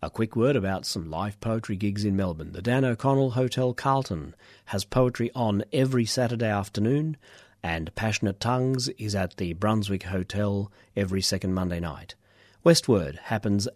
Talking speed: 155 wpm